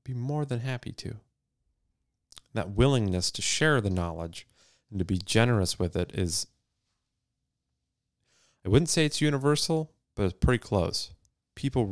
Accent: American